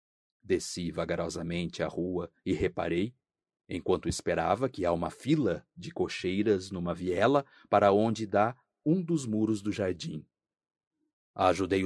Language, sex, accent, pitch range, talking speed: Portuguese, male, Brazilian, 85-120 Hz, 125 wpm